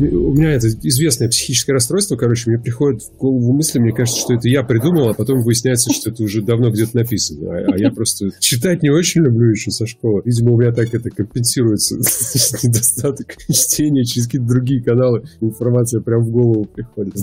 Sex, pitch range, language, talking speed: male, 105-125 Hz, English, 190 wpm